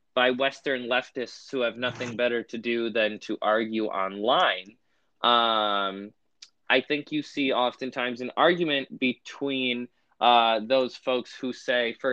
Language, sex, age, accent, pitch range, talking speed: English, male, 20-39, American, 115-140 Hz, 140 wpm